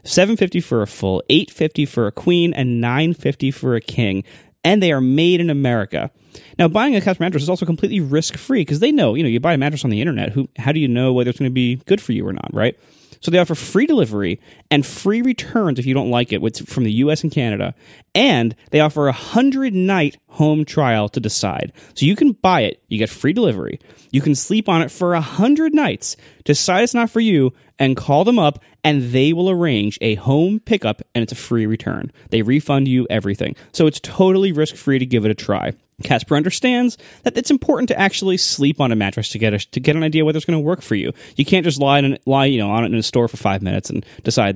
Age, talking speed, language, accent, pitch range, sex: 20-39, 250 wpm, English, American, 120-175 Hz, male